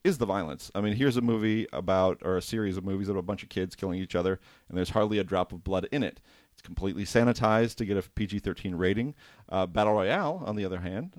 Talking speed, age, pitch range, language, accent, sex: 245 wpm, 30-49, 95-120 Hz, English, American, male